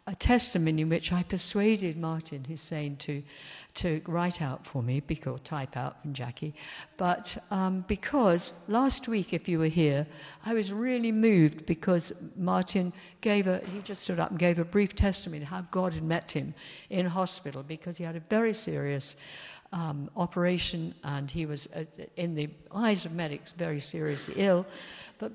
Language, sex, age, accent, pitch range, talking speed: English, female, 60-79, British, 150-200 Hz, 170 wpm